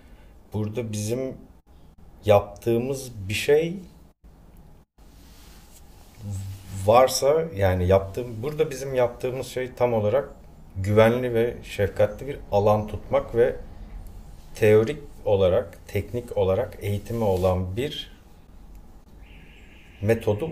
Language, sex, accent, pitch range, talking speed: Turkish, male, native, 90-115 Hz, 85 wpm